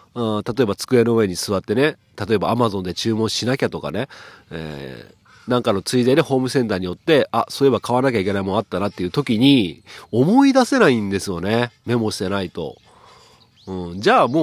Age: 40-59